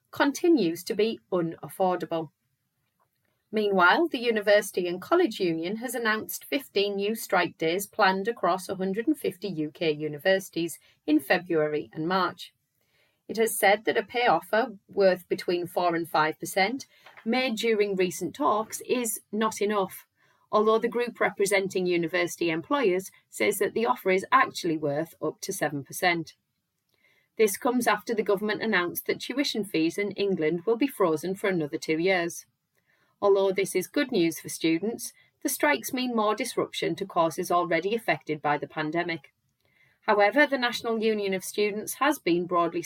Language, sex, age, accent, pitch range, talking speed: English, female, 30-49, British, 165-225 Hz, 150 wpm